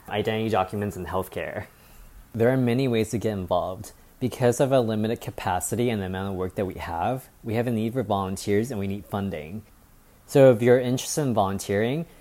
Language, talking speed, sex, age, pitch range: English, 195 wpm, male, 20-39, 100-125 Hz